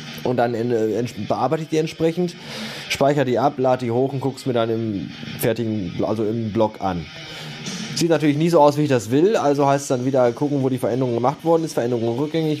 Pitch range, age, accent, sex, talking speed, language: 120-145 Hz, 20-39, German, male, 225 wpm, German